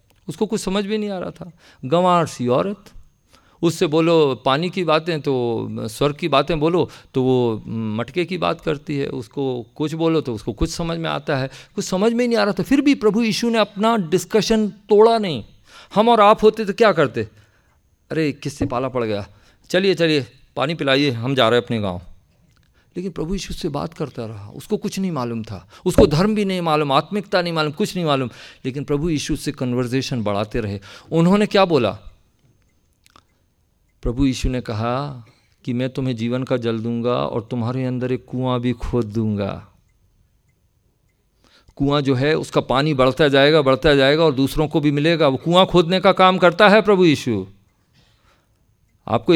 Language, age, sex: Hindi, 50-69, male